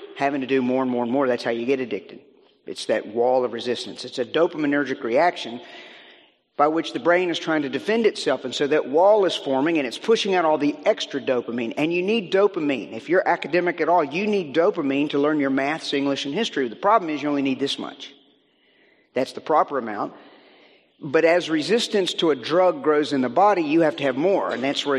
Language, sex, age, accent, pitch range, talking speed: English, male, 50-69, American, 130-175 Hz, 225 wpm